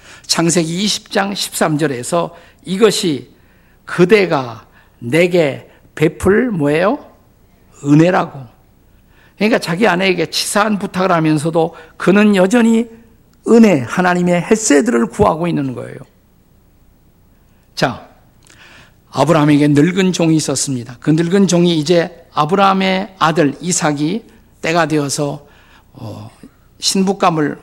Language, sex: Korean, male